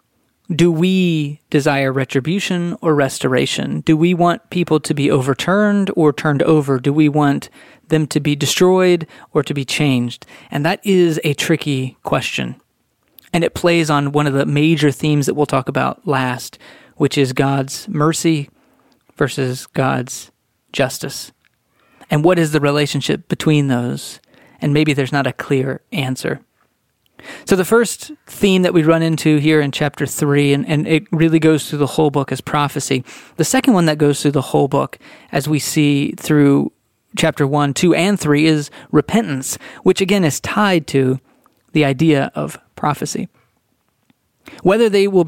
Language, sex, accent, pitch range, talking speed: English, male, American, 140-175 Hz, 165 wpm